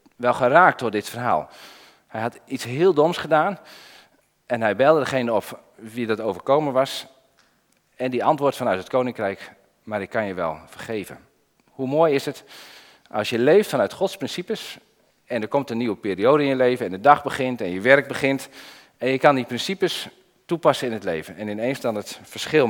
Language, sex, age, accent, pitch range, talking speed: Dutch, male, 40-59, Dutch, 115-160 Hz, 195 wpm